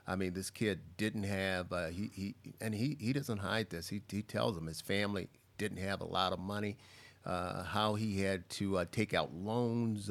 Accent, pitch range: American, 95-115 Hz